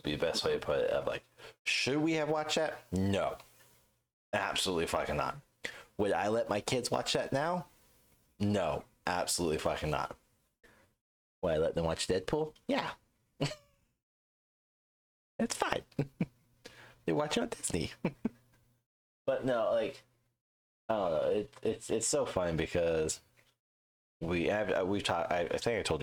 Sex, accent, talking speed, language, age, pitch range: male, American, 150 wpm, English, 30-49, 80-125 Hz